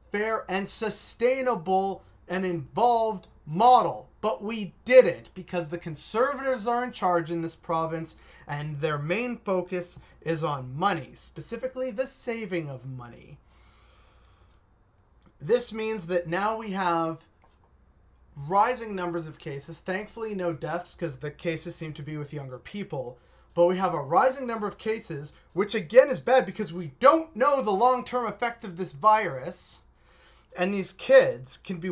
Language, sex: English, male